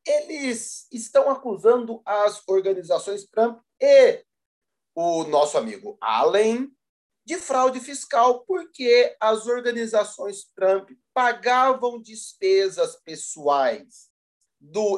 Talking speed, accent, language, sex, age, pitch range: 90 wpm, Brazilian, Portuguese, male, 40-59, 190-260 Hz